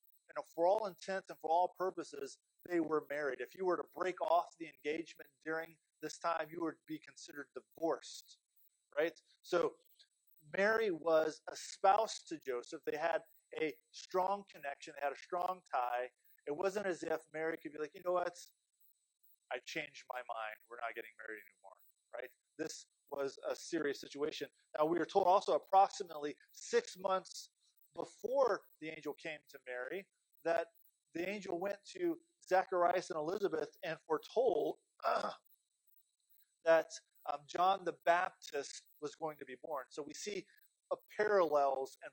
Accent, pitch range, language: American, 150-185 Hz, English